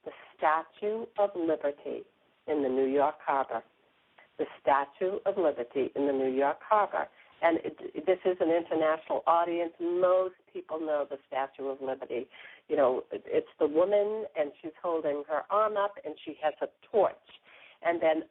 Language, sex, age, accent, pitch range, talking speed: English, female, 50-69, American, 145-205 Hz, 160 wpm